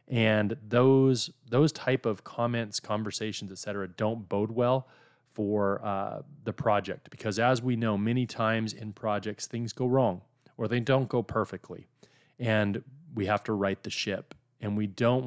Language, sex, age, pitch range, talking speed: English, male, 30-49, 95-125 Hz, 165 wpm